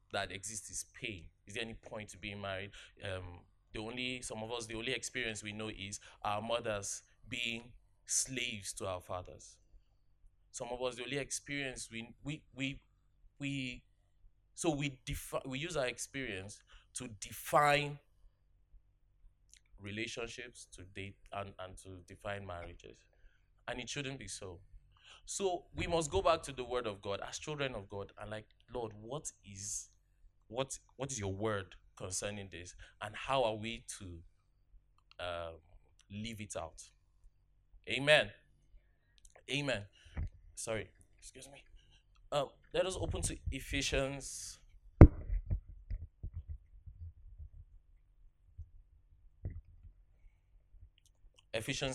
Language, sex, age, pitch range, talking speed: English, male, 20-39, 85-115 Hz, 125 wpm